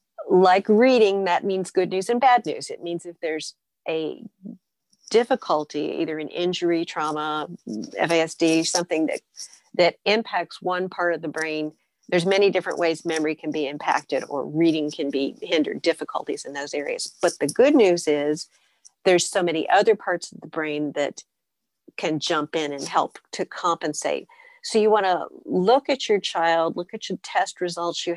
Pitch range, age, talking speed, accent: 155-190 Hz, 50-69, 175 wpm, American